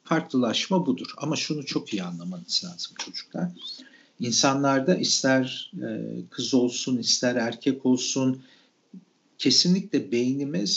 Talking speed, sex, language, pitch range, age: 100 wpm, male, Turkish, 125-205 Hz, 50-69